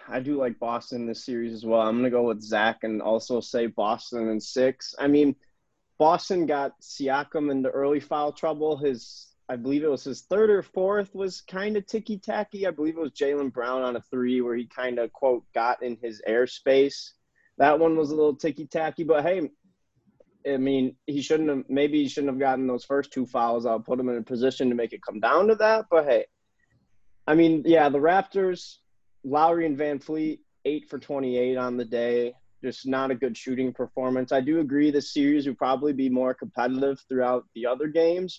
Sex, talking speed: male, 210 wpm